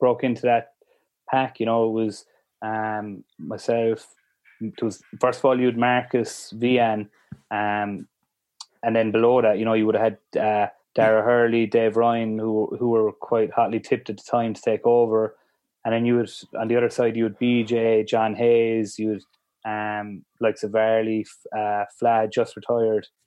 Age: 20-39